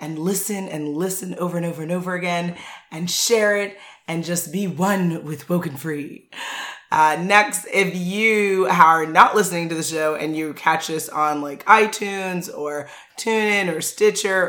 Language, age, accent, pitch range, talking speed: English, 30-49, American, 155-195 Hz, 170 wpm